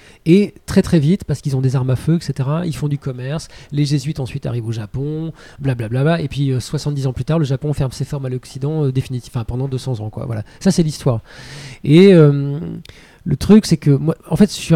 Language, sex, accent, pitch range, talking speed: French, male, French, 135-165 Hz, 250 wpm